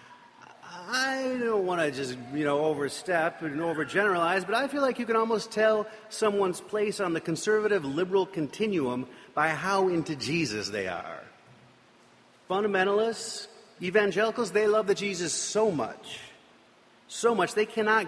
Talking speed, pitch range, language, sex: 145 wpm, 170-220 Hz, English, male